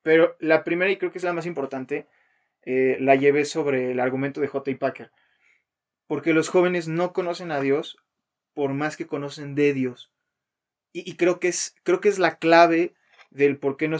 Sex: male